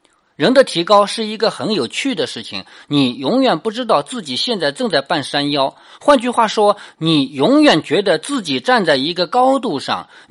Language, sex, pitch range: Chinese, male, 150-245 Hz